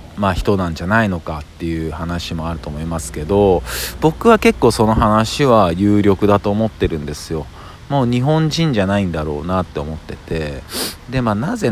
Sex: male